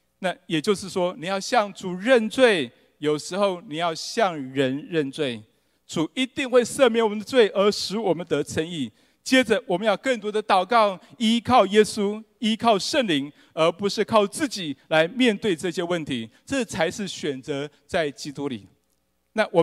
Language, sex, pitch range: Chinese, male, 145-225 Hz